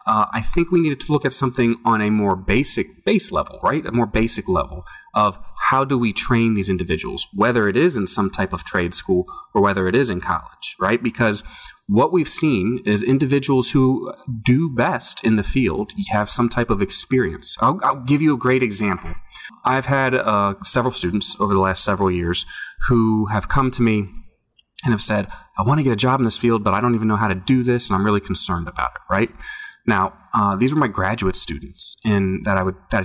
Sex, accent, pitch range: male, American, 100-135 Hz